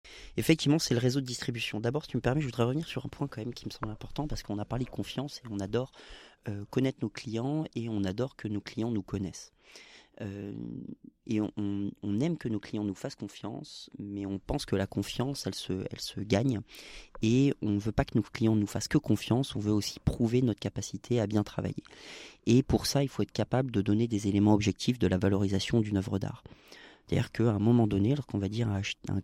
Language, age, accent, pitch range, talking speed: French, 30-49, French, 100-125 Hz, 225 wpm